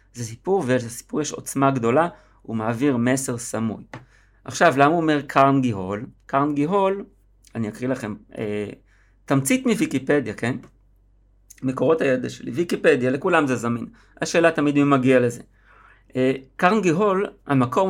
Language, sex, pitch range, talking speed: Hebrew, male, 120-160 Hz, 125 wpm